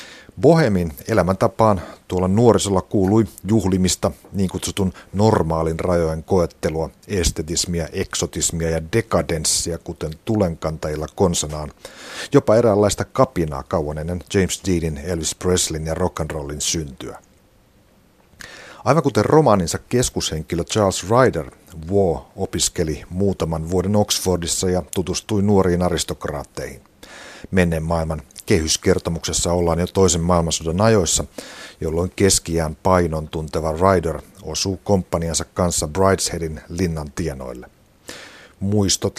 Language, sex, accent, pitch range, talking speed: Finnish, male, native, 80-100 Hz, 100 wpm